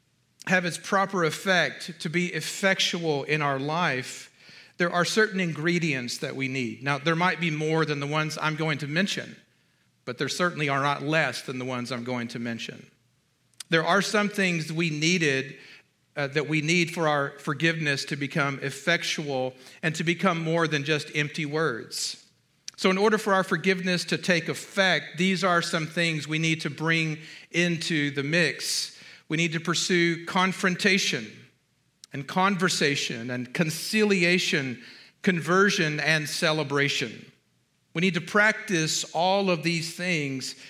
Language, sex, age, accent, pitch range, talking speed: English, male, 40-59, American, 145-180 Hz, 155 wpm